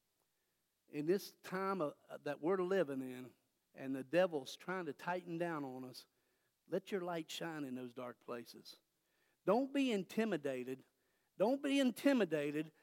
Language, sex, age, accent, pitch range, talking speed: English, male, 50-69, American, 160-235 Hz, 140 wpm